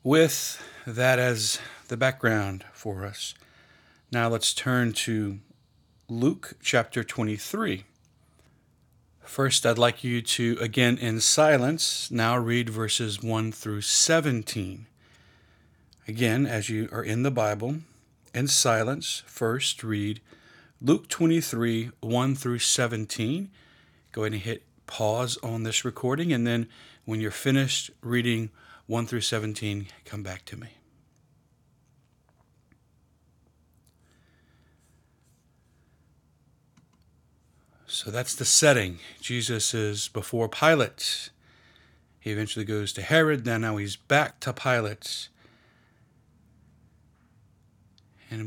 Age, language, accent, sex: 40-59, English, American, male